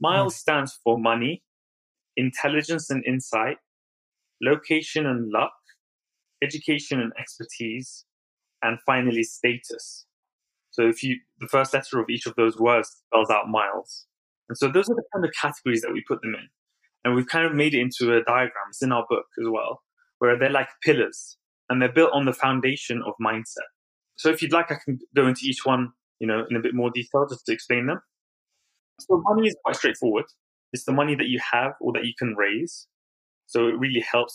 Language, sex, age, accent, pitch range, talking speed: English, male, 20-39, British, 115-140 Hz, 195 wpm